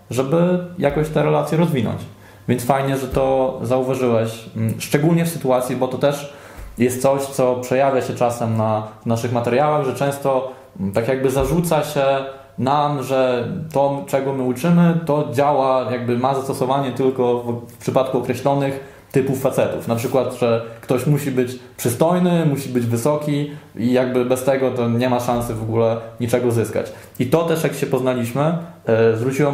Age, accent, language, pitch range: 20-39, native, Polish, 120-145 Hz